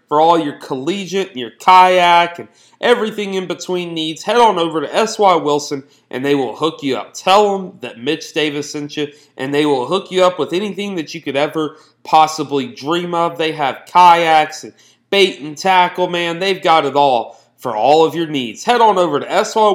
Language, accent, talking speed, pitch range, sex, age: English, American, 205 wpm, 140-170 Hz, male, 30-49